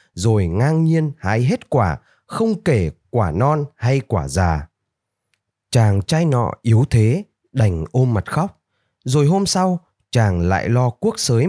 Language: Vietnamese